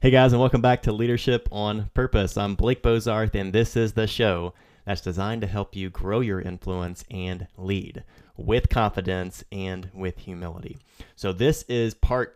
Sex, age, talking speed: male, 30-49, 175 wpm